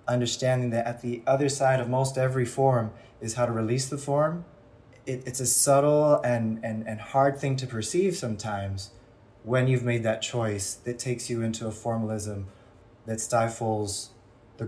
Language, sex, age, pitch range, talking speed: English, male, 20-39, 110-120 Hz, 170 wpm